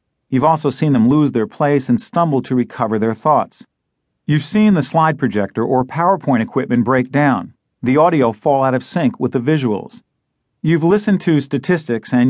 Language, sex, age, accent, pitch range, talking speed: English, male, 40-59, American, 130-170 Hz, 180 wpm